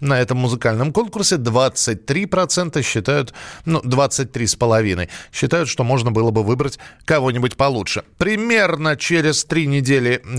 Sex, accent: male, native